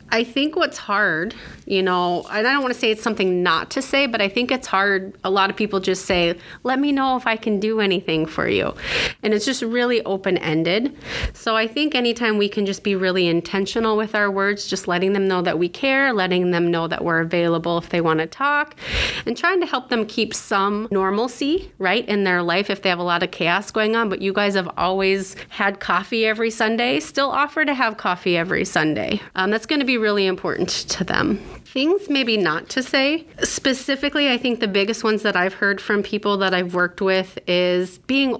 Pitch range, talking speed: 185-230 Hz, 220 wpm